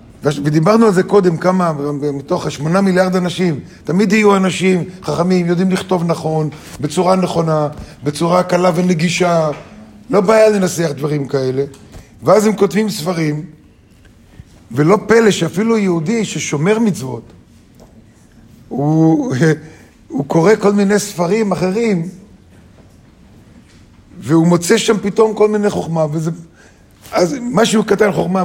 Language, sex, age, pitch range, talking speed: Hebrew, male, 50-69, 150-200 Hz, 115 wpm